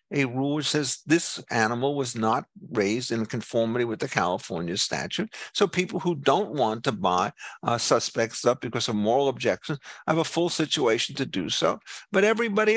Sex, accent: male, American